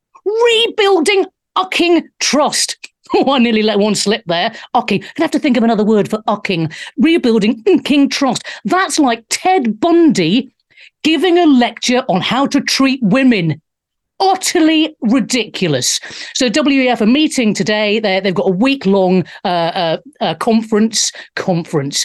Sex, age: female, 40-59